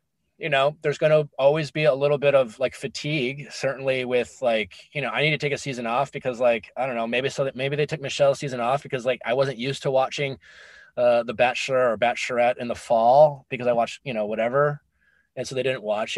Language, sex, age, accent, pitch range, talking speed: English, male, 20-39, American, 125-155 Hz, 240 wpm